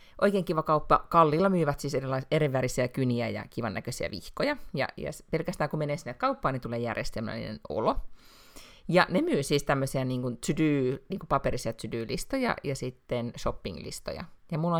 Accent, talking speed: native, 160 wpm